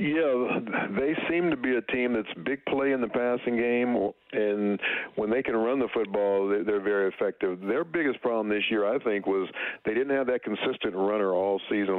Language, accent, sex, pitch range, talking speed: English, American, male, 95-110 Hz, 200 wpm